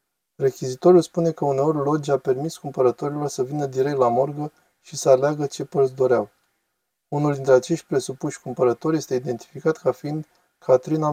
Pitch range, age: 130-165 Hz, 20-39